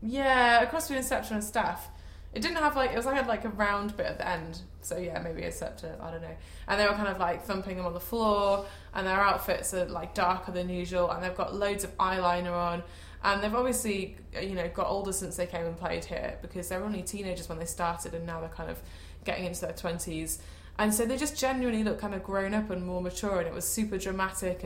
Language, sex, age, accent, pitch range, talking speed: English, female, 20-39, British, 170-205 Hz, 250 wpm